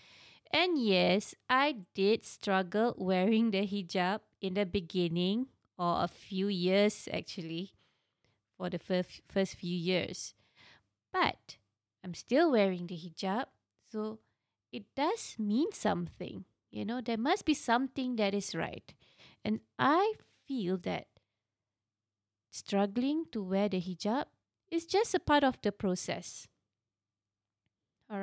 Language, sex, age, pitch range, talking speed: English, female, 20-39, 180-230 Hz, 125 wpm